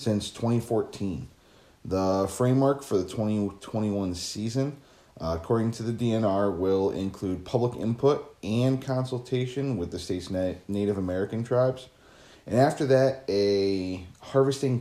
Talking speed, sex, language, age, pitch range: 120 wpm, male, English, 30-49, 95-130 Hz